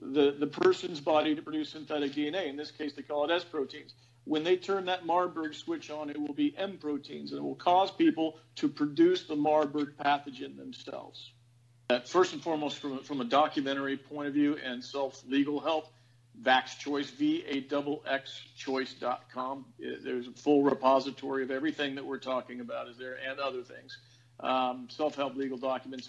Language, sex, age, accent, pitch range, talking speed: English, male, 50-69, American, 130-150 Hz, 170 wpm